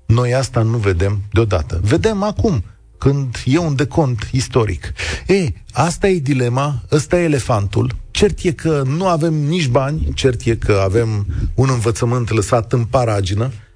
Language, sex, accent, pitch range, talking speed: Romanian, male, native, 100-145 Hz, 155 wpm